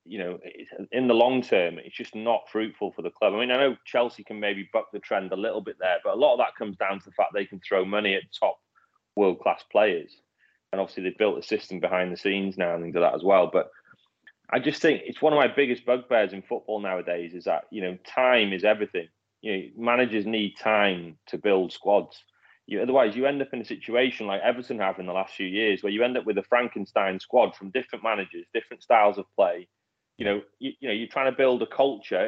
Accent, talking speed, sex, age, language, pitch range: British, 245 wpm, male, 30-49, English, 100-125 Hz